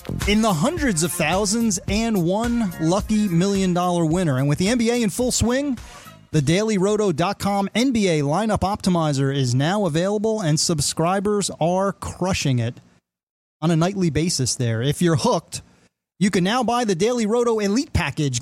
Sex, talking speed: male, 155 wpm